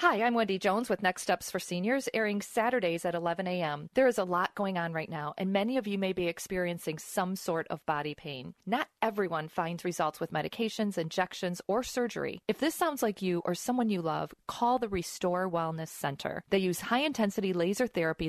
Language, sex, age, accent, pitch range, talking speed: English, female, 40-59, American, 165-210 Hz, 205 wpm